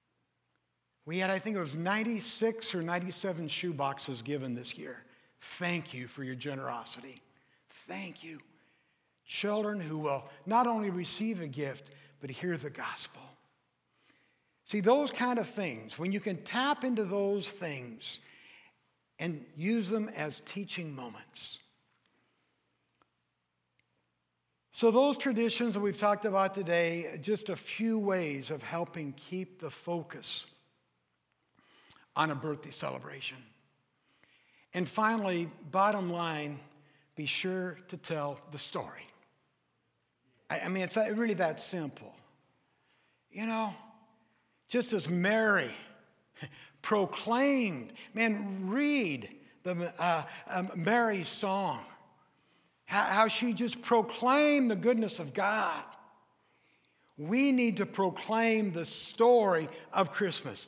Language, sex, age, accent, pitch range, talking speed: English, male, 60-79, American, 150-220 Hz, 115 wpm